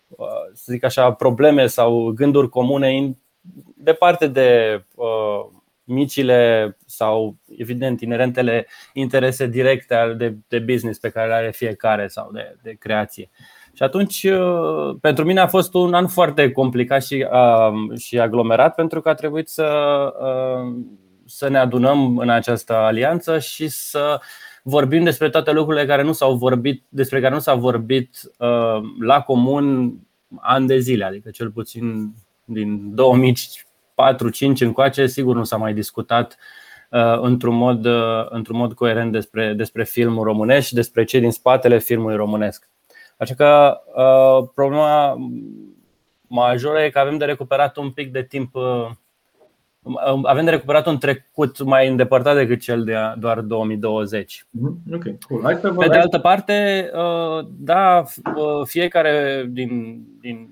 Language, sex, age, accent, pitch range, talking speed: Romanian, male, 20-39, native, 115-145 Hz, 140 wpm